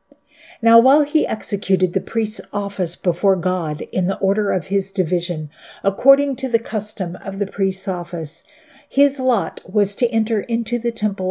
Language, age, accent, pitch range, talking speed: English, 50-69, American, 180-215 Hz, 165 wpm